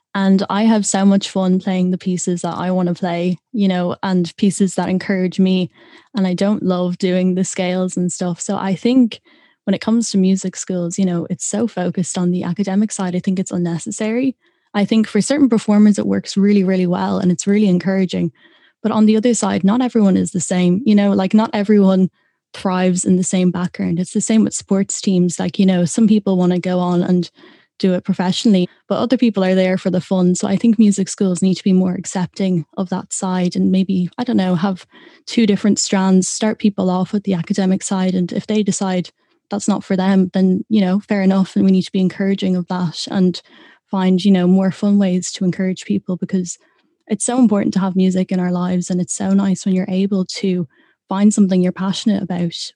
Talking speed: 225 wpm